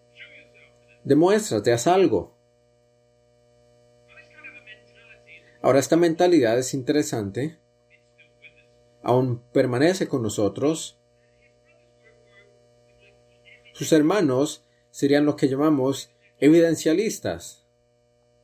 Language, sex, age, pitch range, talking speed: English, male, 40-59, 120-145 Hz, 60 wpm